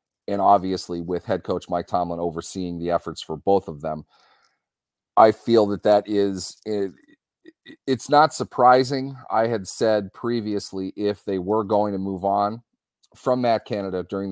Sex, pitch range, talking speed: male, 90-105 Hz, 155 wpm